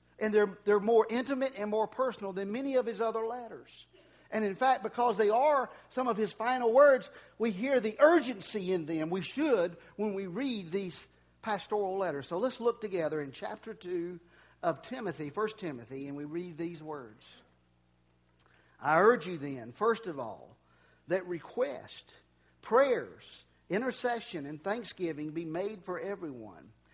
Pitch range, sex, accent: 165-220 Hz, male, American